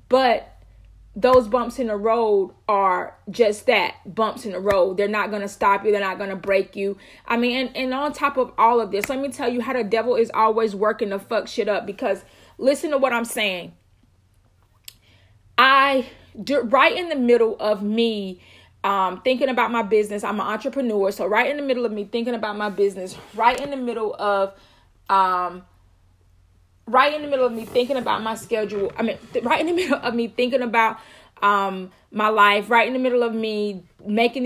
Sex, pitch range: female, 205-255 Hz